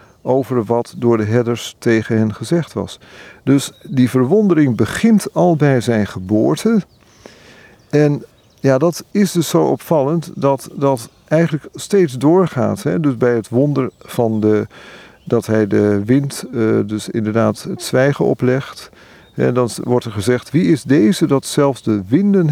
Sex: male